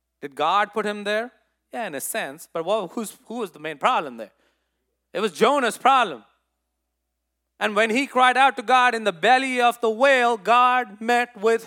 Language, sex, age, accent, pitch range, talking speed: English, male, 30-49, Indian, 175-265 Hz, 185 wpm